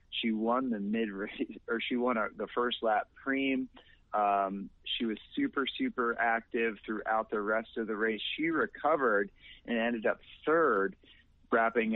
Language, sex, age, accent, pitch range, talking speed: English, male, 40-59, American, 100-115 Hz, 155 wpm